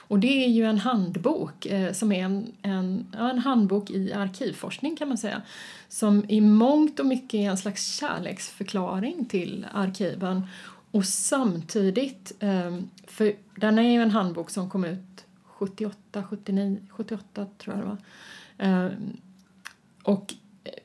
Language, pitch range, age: Swedish, 190-225 Hz, 30-49